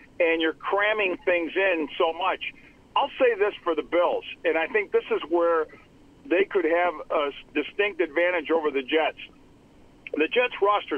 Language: English